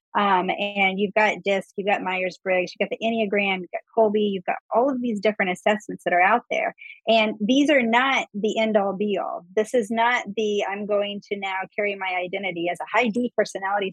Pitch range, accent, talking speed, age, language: 195-235 Hz, American, 210 wpm, 30-49, English